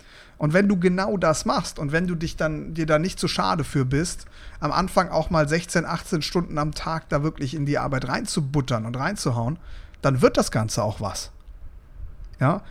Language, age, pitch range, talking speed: German, 40-59, 135-180 Hz, 205 wpm